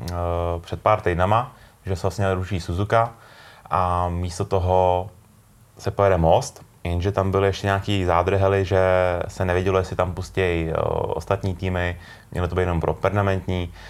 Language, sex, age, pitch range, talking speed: Czech, male, 20-39, 90-100 Hz, 145 wpm